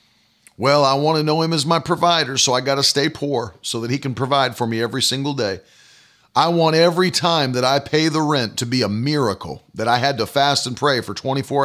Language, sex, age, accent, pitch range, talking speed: English, male, 40-59, American, 140-195 Hz, 240 wpm